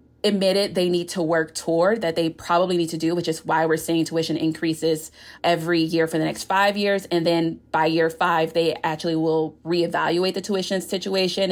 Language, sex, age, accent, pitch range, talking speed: English, female, 30-49, American, 160-190 Hz, 200 wpm